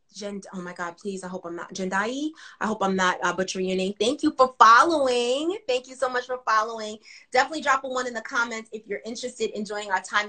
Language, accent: English, American